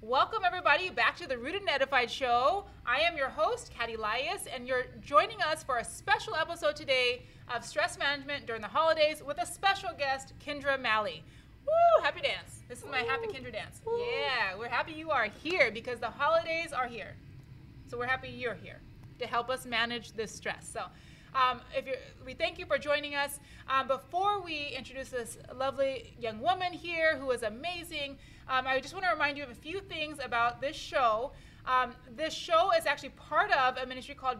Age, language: 20-39, English